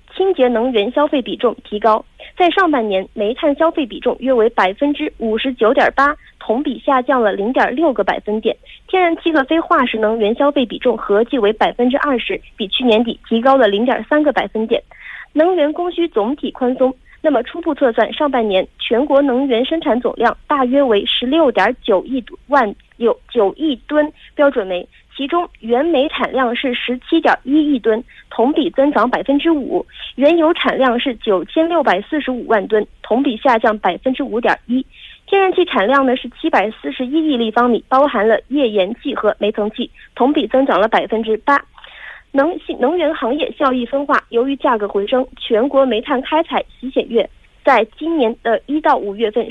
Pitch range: 225-300 Hz